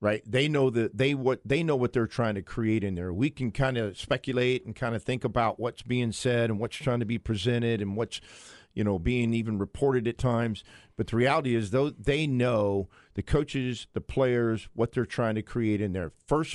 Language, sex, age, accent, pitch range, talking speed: English, male, 50-69, American, 110-135 Hz, 225 wpm